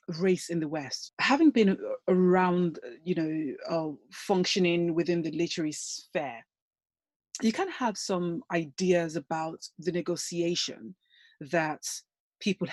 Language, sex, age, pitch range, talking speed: English, female, 30-49, 160-190 Hz, 120 wpm